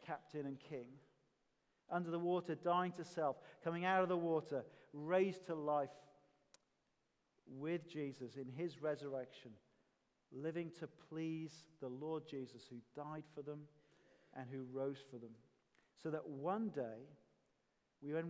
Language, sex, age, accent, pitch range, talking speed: English, male, 40-59, British, 150-190 Hz, 140 wpm